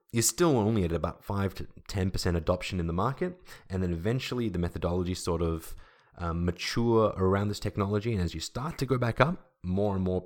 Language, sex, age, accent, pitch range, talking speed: English, male, 20-39, Australian, 85-110 Hz, 210 wpm